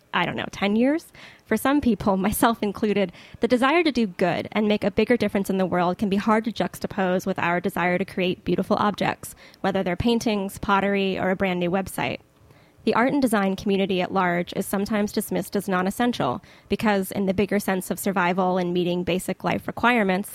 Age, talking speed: 10-29, 200 wpm